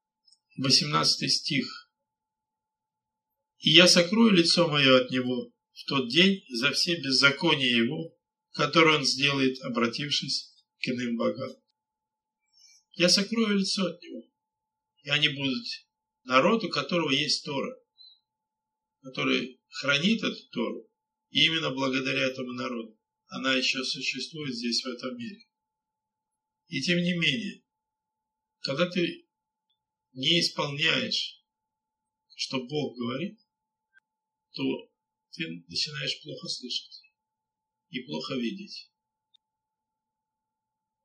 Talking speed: 105 wpm